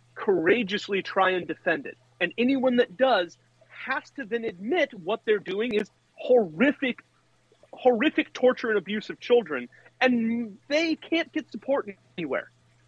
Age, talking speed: 40-59, 140 wpm